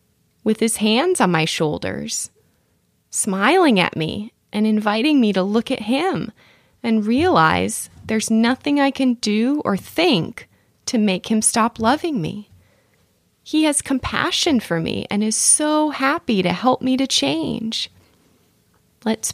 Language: English